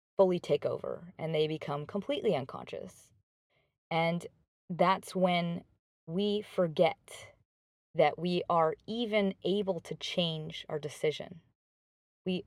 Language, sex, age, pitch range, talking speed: English, female, 20-39, 155-195 Hz, 110 wpm